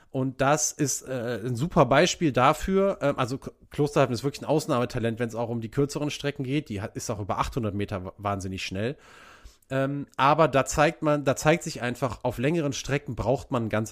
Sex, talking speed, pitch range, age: male, 205 wpm, 110-135 Hz, 30-49